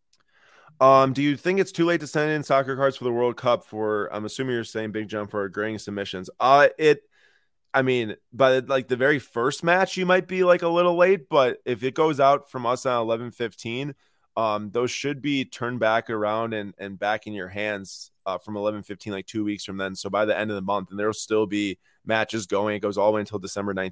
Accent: American